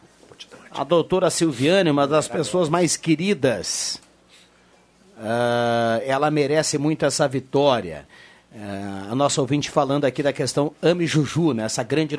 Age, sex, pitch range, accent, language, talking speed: 50-69, male, 145-180 Hz, Brazilian, Portuguese, 125 wpm